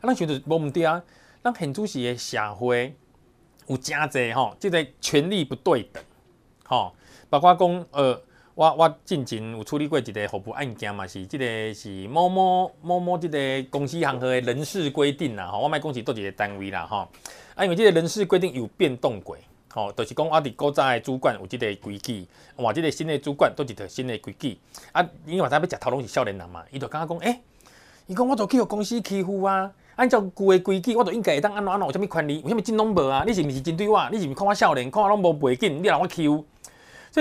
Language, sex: Chinese, male